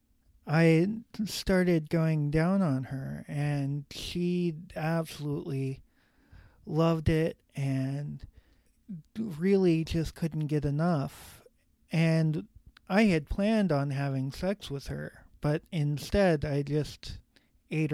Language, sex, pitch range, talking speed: English, male, 145-170 Hz, 105 wpm